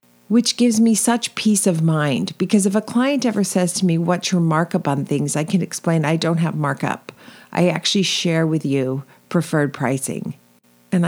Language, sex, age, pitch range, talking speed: English, female, 50-69, 150-210 Hz, 190 wpm